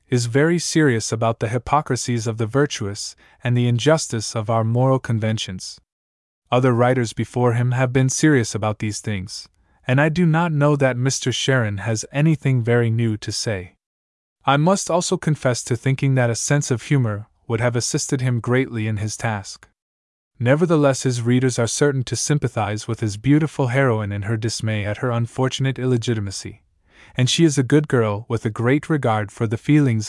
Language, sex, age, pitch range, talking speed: English, male, 20-39, 110-140 Hz, 180 wpm